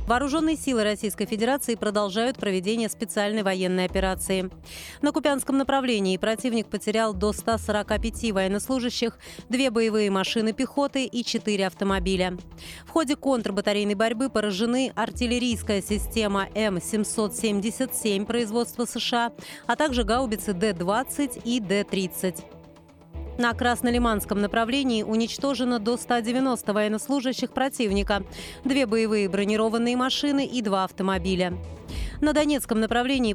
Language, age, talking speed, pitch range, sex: Russian, 30-49, 105 wpm, 205-250 Hz, female